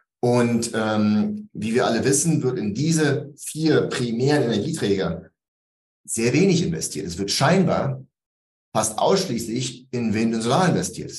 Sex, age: male, 30-49